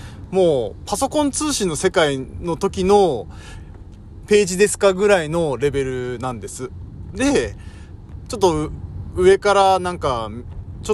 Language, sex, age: Japanese, male, 20-39